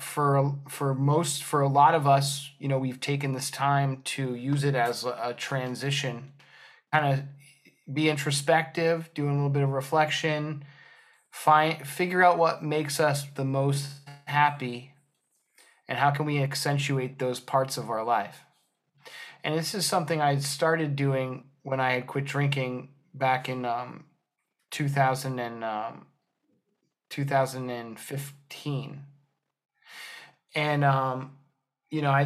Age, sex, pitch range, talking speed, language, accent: 20-39, male, 130-150 Hz, 140 wpm, English, American